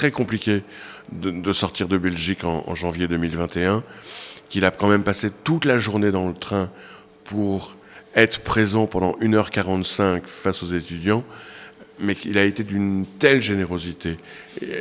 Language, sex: French, male